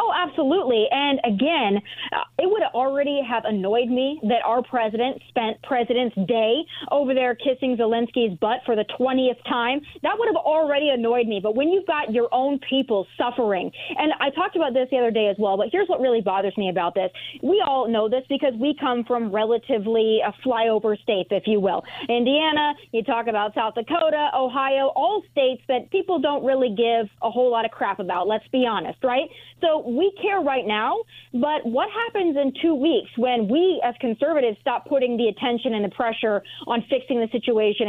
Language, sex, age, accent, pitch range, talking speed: English, female, 30-49, American, 220-280 Hz, 195 wpm